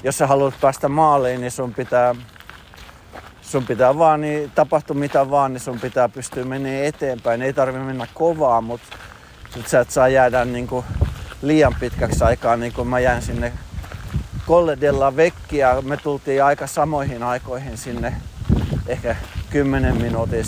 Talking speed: 145 wpm